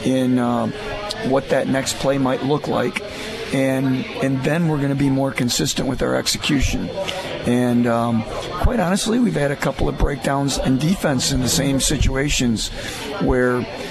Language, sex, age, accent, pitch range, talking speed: English, male, 50-69, American, 120-140 Hz, 165 wpm